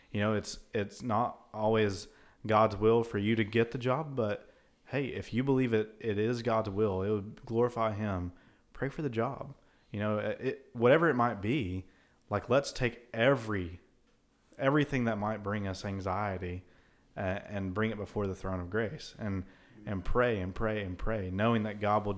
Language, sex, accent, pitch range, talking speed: English, male, American, 95-110 Hz, 185 wpm